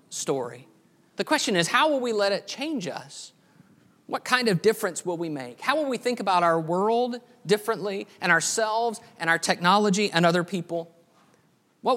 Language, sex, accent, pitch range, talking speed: English, male, American, 170-220 Hz, 175 wpm